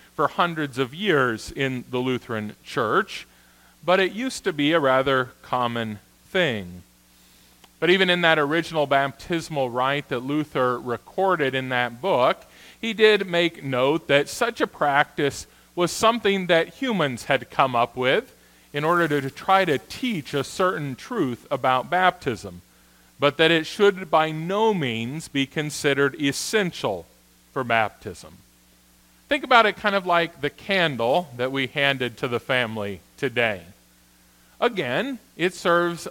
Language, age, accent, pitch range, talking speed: English, 40-59, American, 115-170 Hz, 145 wpm